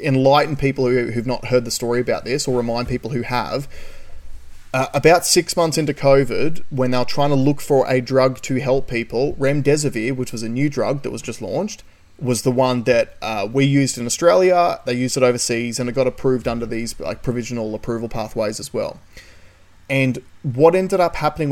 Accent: Australian